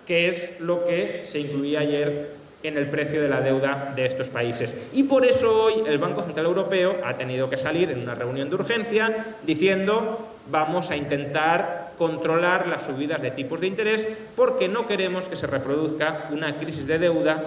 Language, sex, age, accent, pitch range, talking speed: Spanish, male, 30-49, Spanish, 155-225 Hz, 185 wpm